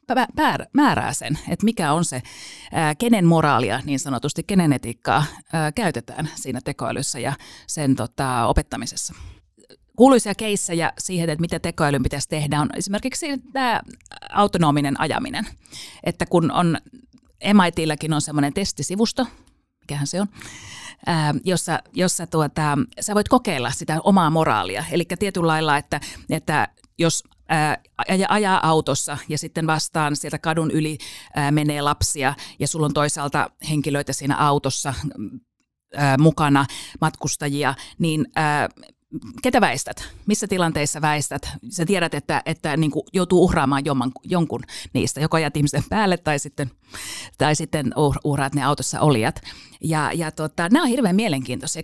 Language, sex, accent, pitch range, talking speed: Finnish, female, native, 145-190 Hz, 125 wpm